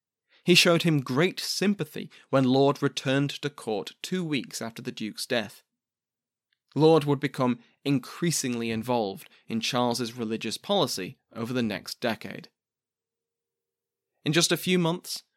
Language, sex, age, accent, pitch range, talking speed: English, male, 20-39, British, 115-145 Hz, 135 wpm